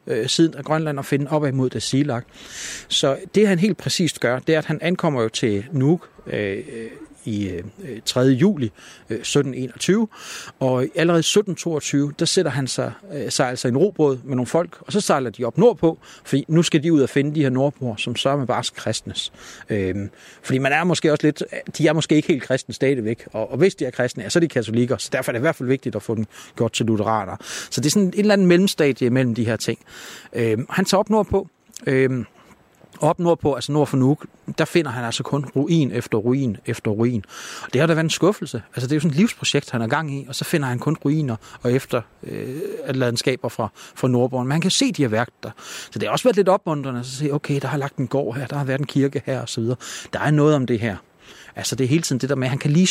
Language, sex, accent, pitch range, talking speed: Danish, male, native, 125-165 Hz, 245 wpm